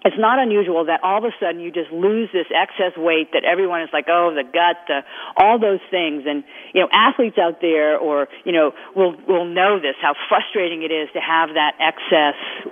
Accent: American